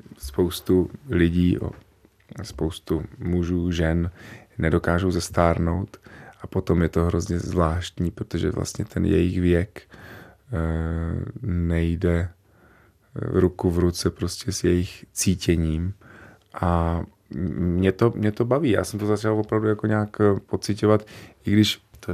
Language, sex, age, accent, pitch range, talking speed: Czech, male, 30-49, native, 85-100 Hz, 120 wpm